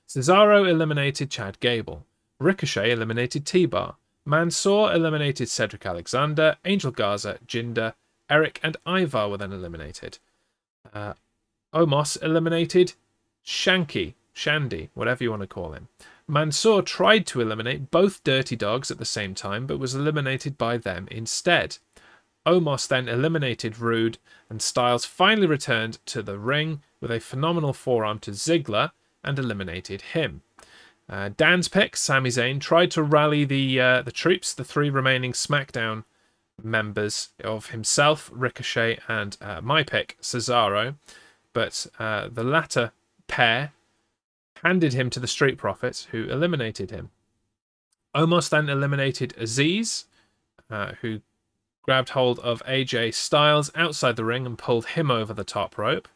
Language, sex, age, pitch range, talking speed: English, male, 30-49, 110-150 Hz, 135 wpm